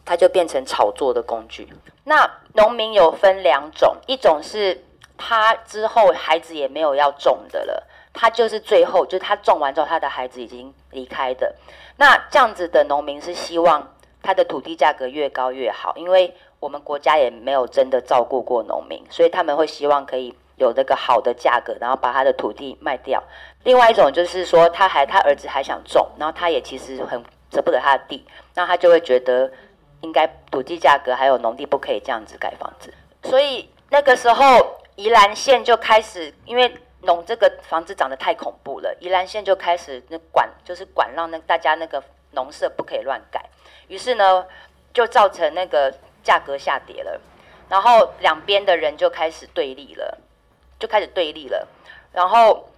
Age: 30-49